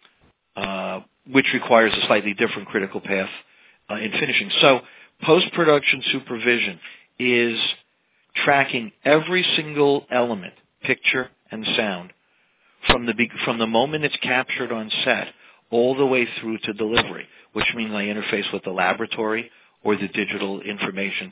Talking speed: 140 wpm